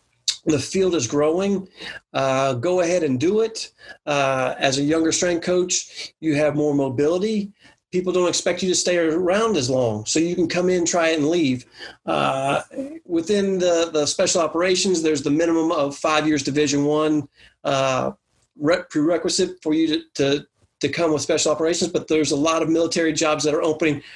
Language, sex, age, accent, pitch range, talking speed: English, male, 40-59, American, 145-170 Hz, 185 wpm